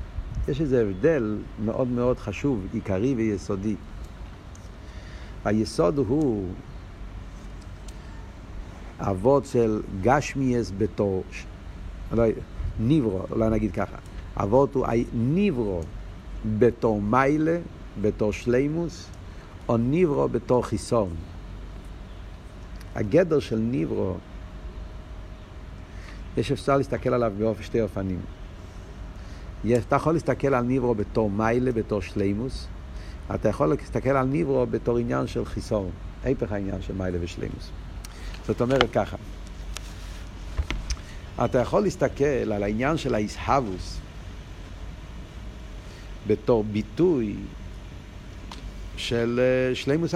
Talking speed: 95 wpm